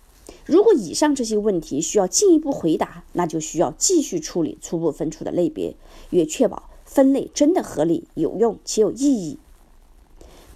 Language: Chinese